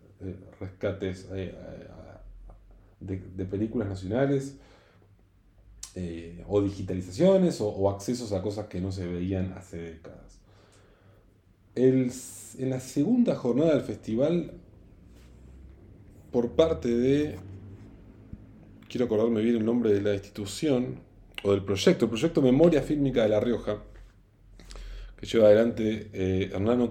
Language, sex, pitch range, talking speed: English, male, 95-115 Hz, 105 wpm